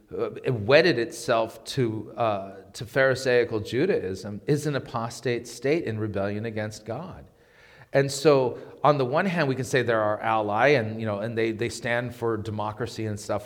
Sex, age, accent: male, 40-59, American